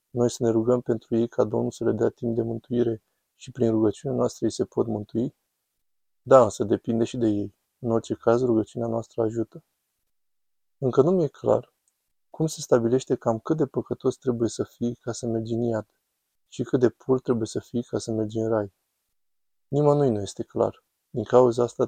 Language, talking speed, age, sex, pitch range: Romanian, 195 wpm, 20-39, male, 110-125 Hz